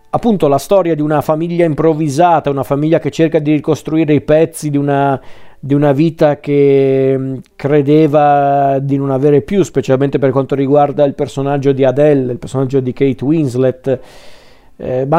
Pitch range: 140-155 Hz